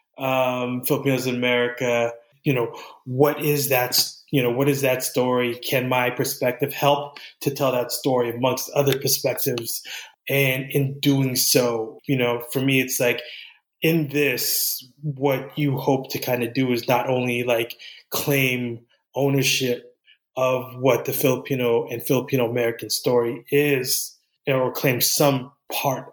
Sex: male